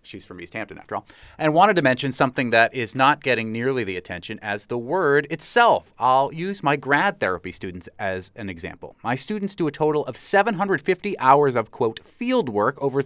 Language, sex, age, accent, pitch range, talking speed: English, male, 30-49, American, 110-160 Hz, 200 wpm